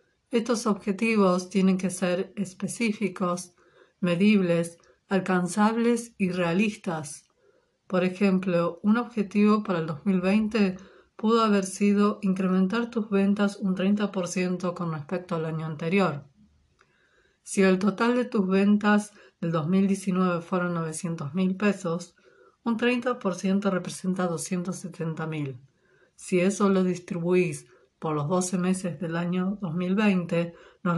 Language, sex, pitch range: Spanish, female, 170-205 Hz